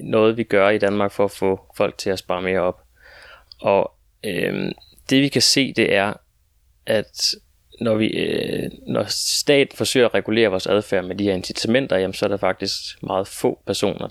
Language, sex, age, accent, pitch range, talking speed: Danish, male, 20-39, native, 95-110 Hz, 175 wpm